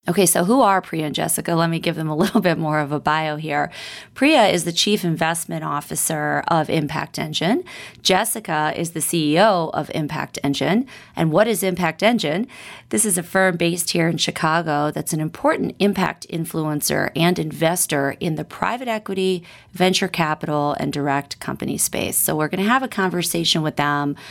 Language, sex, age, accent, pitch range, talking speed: English, female, 30-49, American, 155-190 Hz, 180 wpm